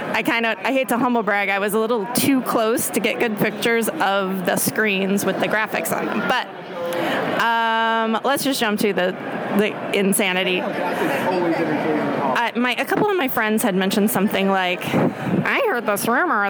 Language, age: English, 30-49